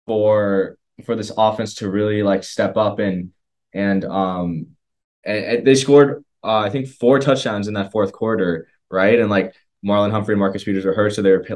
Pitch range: 100-125 Hz